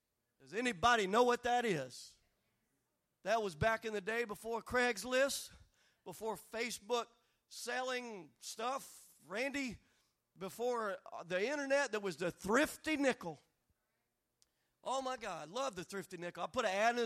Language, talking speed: English, 140 wpm